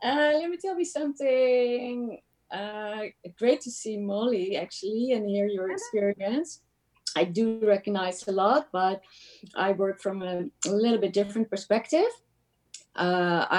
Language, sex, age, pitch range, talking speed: English, female, 30-49, 170-210 Hz, 140 wpm